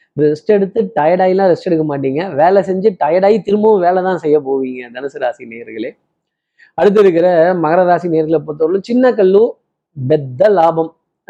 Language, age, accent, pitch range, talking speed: Tamil, 20-39, native, 160-195 Hz, 140 wpm